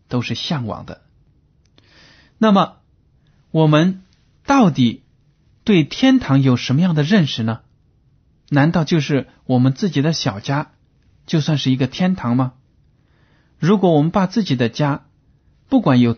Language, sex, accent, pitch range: Chinese, male, native, 120-150 Hz